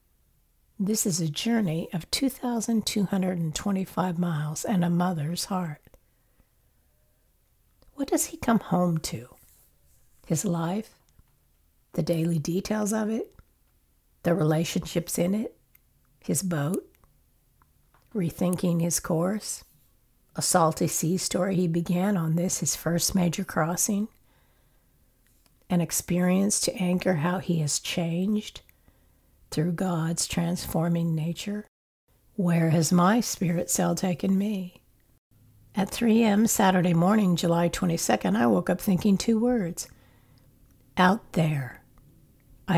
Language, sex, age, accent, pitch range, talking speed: English, female, 60-79, American, 160-195 Hz, 110 wpm